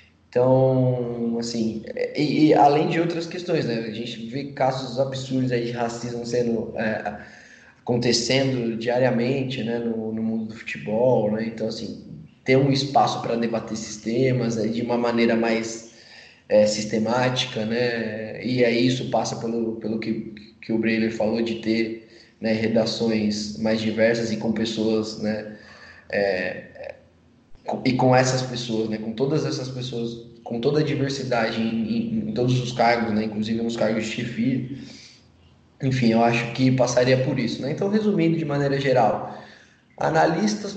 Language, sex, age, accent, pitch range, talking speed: Portuguese, male, 20-39, Brazilian, 115-135 Hz, 155 wpm